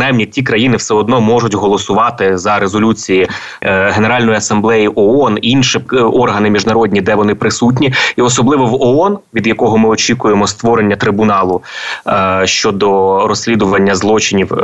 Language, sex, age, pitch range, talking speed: Ukrainian, male, 20-39, 95-110 Hz, 125 wpm